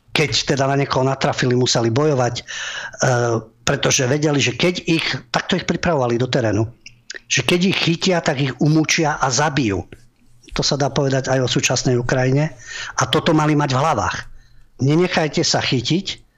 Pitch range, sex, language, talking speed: 120-155 Hz, male, Slovak, 160 wpm